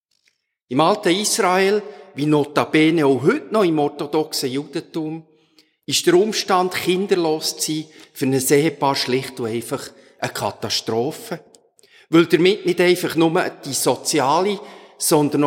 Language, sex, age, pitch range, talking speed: German, male, 50-69, 135-180 Hz, 130 wpm